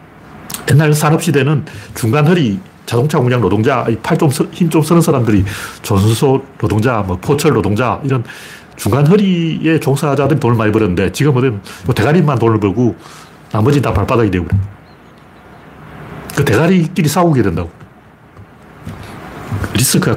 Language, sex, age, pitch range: Korean, male, 40-59, 110-155 Hz